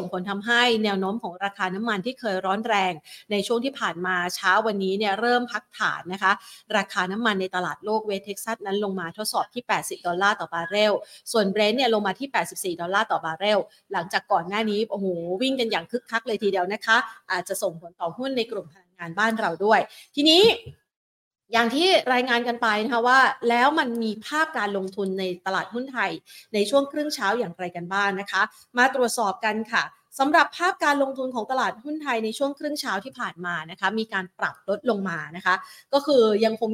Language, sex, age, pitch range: Thai, female, 30-49, 190-245 Hz